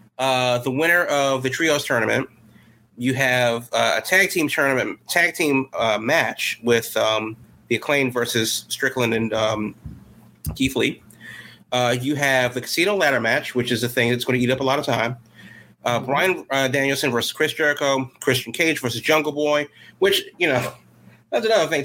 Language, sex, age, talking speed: English, male, 30-49, 180 wpm